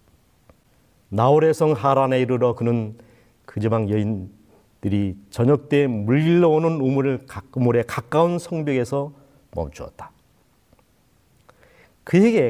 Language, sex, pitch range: Korean, male, 120-185 Hz